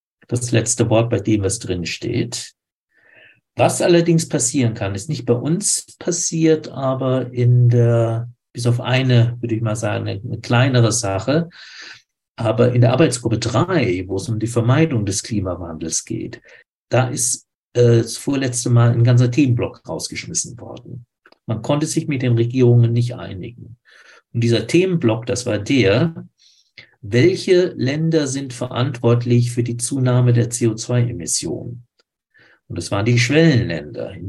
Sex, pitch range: male, 115-135 Hz